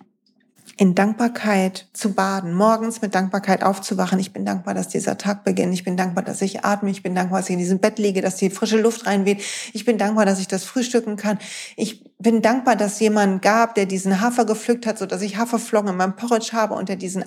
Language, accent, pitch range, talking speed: German, German, 190-230 Hz, 220 wpm